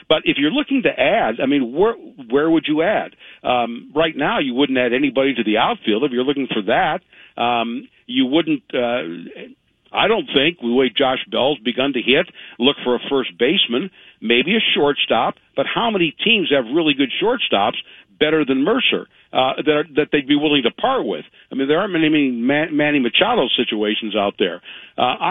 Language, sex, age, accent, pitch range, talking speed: English, male, 60-79, American, 120-160 Hz, 195 wpm